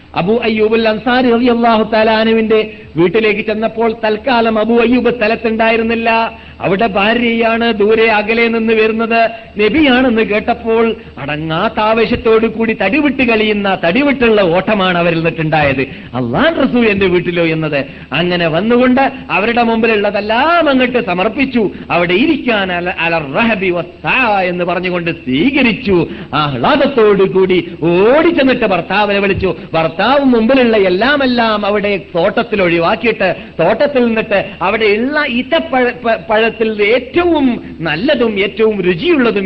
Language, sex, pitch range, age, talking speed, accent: Malayalam, male, 140-225 Hz, 50-69, 85 wpm, native